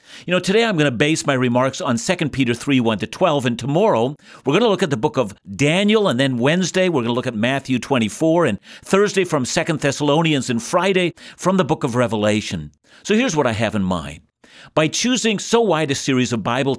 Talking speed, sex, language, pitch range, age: 225 wpm, male, English, 130-185 Hz, 60-79